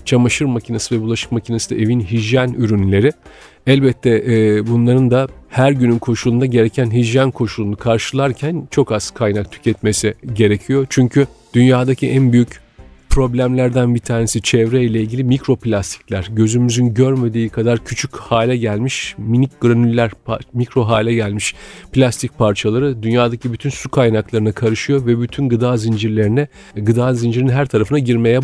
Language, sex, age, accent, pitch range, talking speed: Turkish, male, 40-59, native, 110-125 Hz, 135 wpm